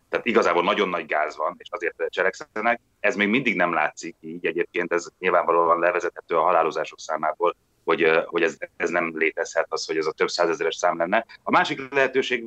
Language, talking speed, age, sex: Hungarian, 185 wpm, 30-49, male